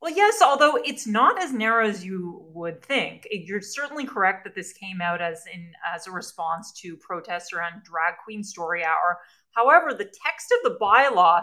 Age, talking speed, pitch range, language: 30-49, 190 wpm, 185-245 Hz, English